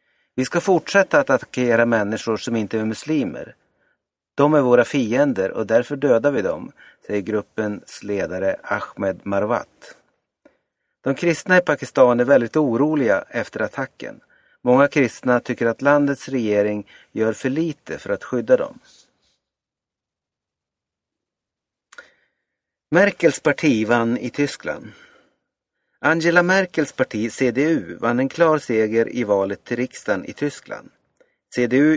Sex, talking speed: male, 125 wpm